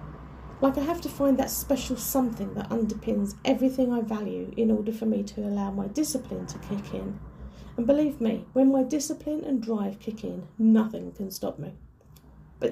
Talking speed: 185 wpm